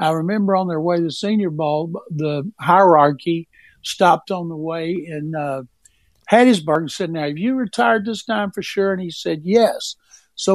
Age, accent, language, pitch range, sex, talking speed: 60-79, American, English, 160-195 Hz, male, 190 wpm